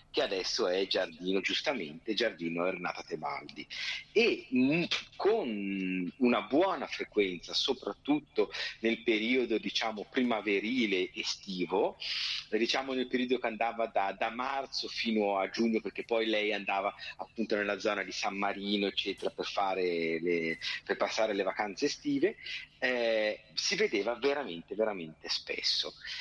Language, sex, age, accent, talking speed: Italian, male, 40-59, native, 125 wpm